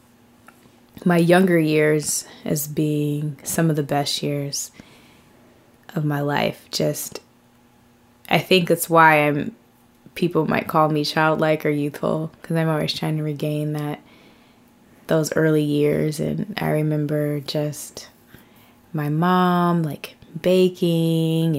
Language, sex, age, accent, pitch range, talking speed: English, female, 20-39, American, 145-165 Hz, 120 wpm